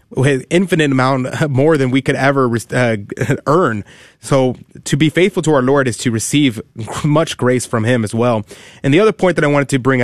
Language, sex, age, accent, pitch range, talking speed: English, male, 20-39, American, 125-165 Hz, 210 wpm